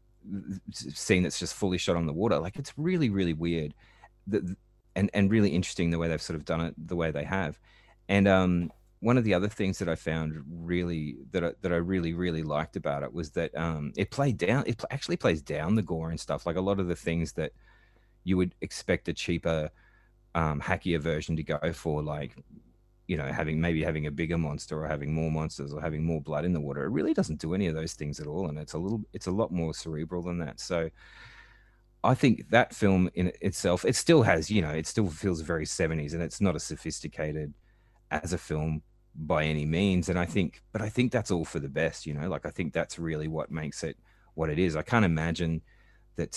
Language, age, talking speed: English, 30-49, 230 wpm